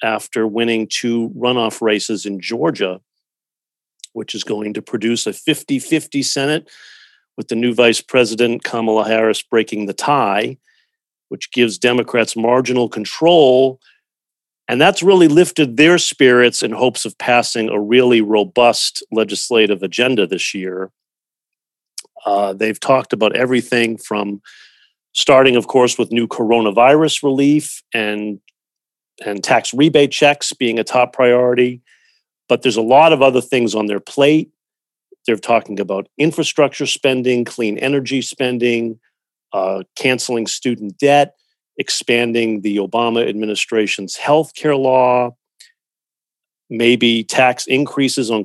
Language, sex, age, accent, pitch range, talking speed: English, male, 40-59, American, 110-135 Hz, 125 wpm